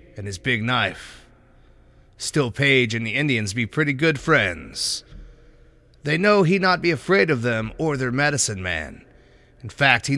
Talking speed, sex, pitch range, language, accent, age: 165 wpm, male, 105-150 Hz, English, American, 30-49